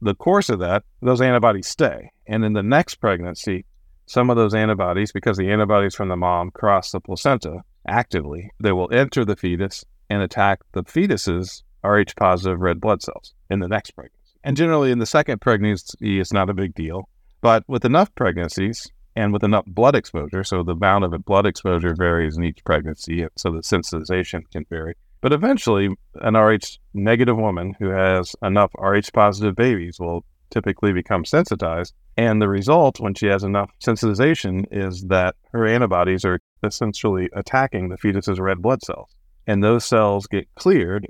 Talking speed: 170 wpm